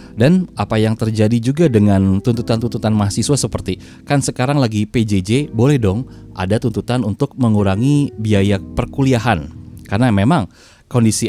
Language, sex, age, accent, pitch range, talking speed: Indonesian, male, 20-39, native, 95-130 Hz, 130 wpm